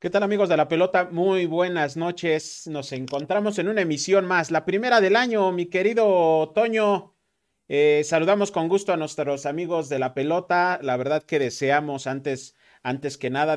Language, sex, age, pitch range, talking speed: Spanish, male, 40-59, 140-175 Hz, 175 wpm